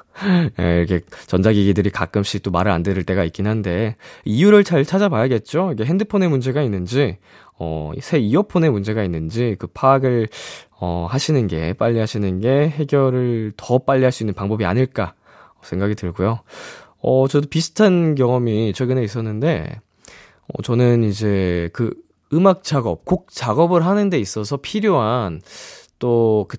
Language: Korean